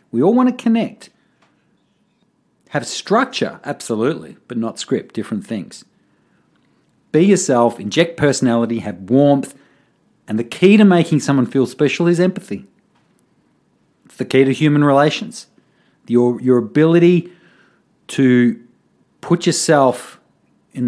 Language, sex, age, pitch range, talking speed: English, male, 40-59, 120-175 Hz, 120 wpm